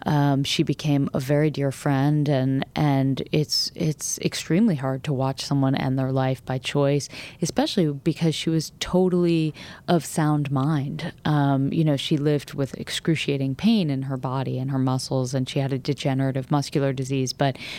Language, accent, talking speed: English, American, 170 wpm